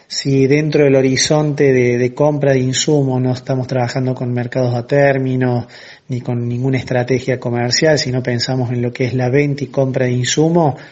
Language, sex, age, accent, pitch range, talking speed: Spanish, male, 30-49, Argentinian, 120-135 Hz, 180 wpm